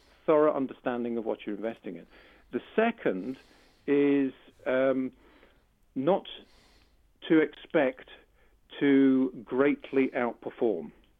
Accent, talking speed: British, 90 wpm